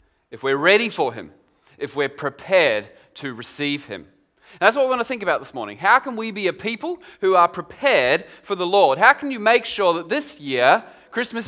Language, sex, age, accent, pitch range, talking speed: English, male, 20-39, Australian, 150-205 Hz, 215 wpm